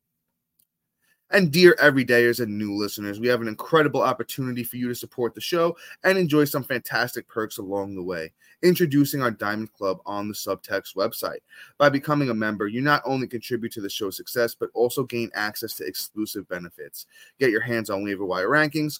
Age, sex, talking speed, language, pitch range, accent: 20-39, male, 185 wpm, English, 110-145 Hz, American